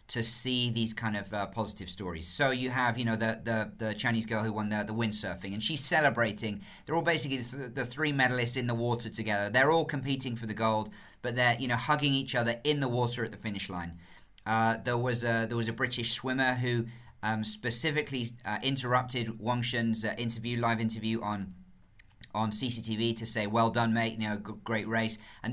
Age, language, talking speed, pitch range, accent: 40-59, English, 210 wpm, 110-125 Hz, British